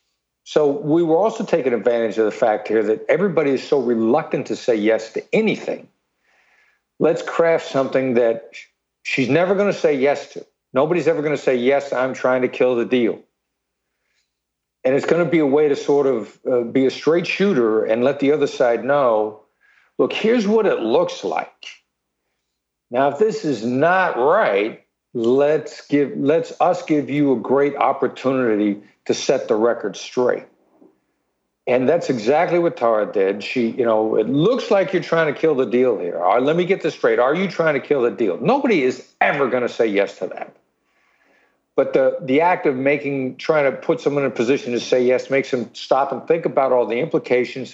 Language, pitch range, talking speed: English, 120-165 Hz, 190 wpm